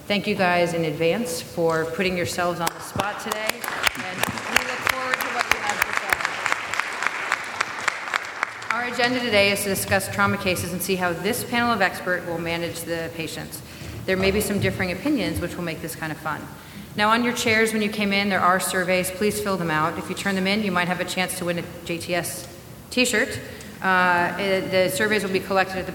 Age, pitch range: 40-59, 170-200 Hz